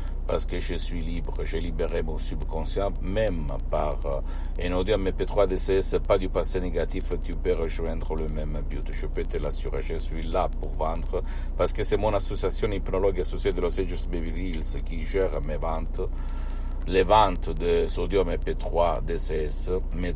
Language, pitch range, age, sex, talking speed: Italian, 70-90 Hz, 60-79, male, 165 wpm